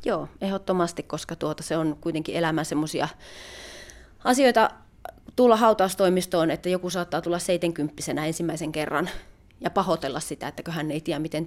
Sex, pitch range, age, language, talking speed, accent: female, 160-205 Hz, 30-49, Finnish, 140 wpm, native